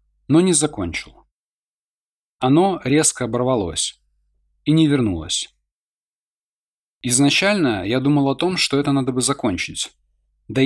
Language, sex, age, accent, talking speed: Russian, male, 20-39, native, 115 wpm